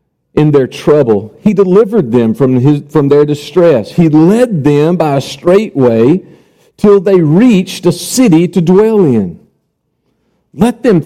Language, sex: English, male